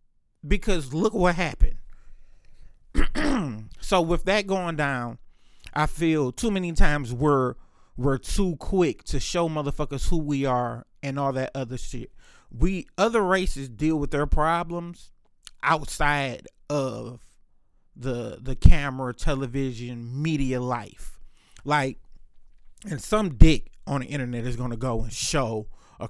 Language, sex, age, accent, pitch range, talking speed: English, male, 30-49, American, 125-165 Hz, 135 wpm